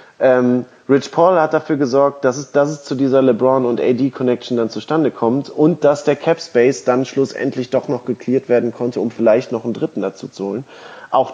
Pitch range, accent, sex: 115-145 Hz, German, male